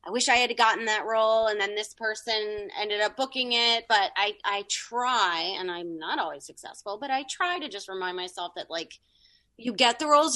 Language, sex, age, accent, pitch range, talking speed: English, female, 30-49, American, 175-235 Hz, 215 wpm